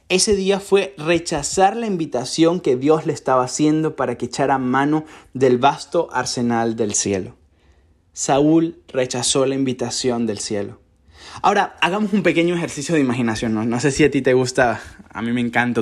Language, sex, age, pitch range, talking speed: Spanish, male, 20-39, 130-195 Hz, 165 wpm